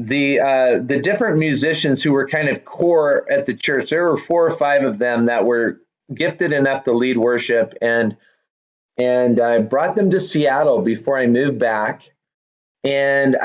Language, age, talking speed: English, 30-49, 175 wpm